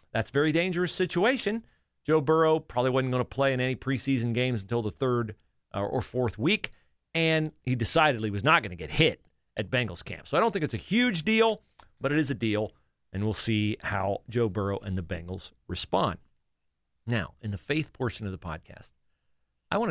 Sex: male